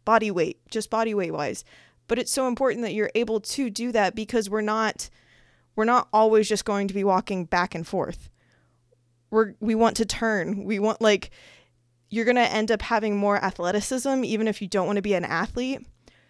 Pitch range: 190-225 Hz